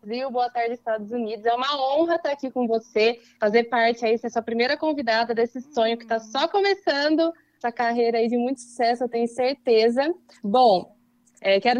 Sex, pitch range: female, 225-280 Hz